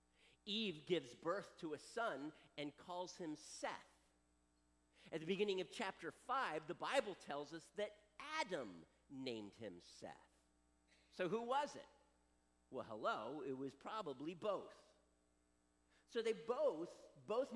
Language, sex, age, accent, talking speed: English, male, 50-69, American, 135 wpm